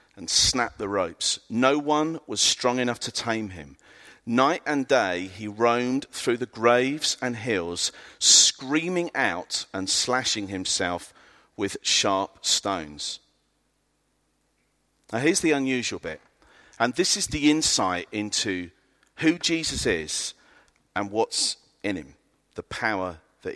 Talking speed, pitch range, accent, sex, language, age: 130 wpm, 120-185 Hz, British, male, English, 40-59